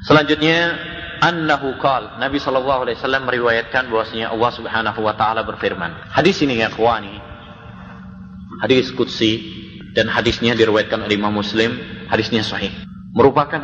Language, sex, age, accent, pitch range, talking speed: Indonesian, male, 30-49, native, 105-155 Hz, 120 wpm